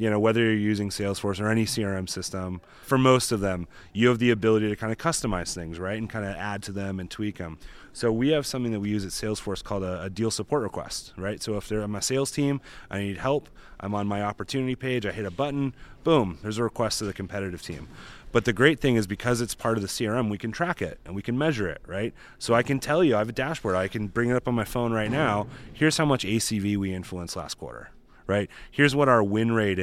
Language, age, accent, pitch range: English, 30-49, American, 100-125 Hz